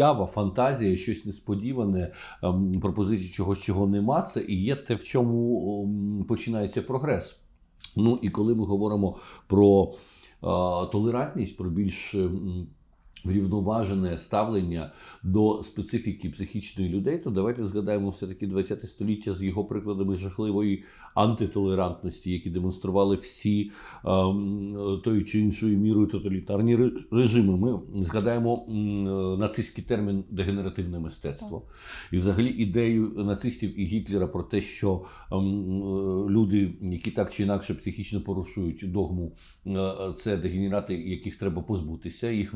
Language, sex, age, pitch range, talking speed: Ukrainian, male, 50-69, 95-105 Hz, 125 wpm